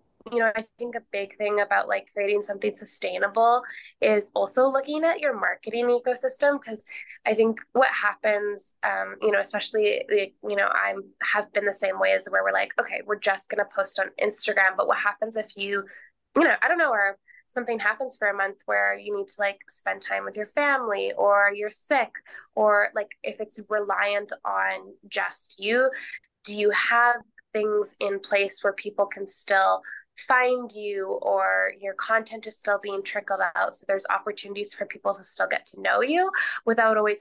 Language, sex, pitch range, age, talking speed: English, female, 195-230 Hz, 10-29, 190 wpm